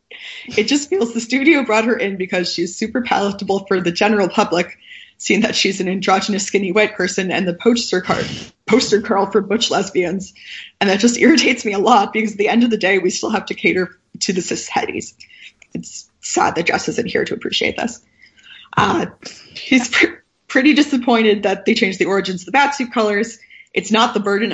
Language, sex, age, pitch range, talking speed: English, female, 20-39, 180-225 Hz, 205 wpm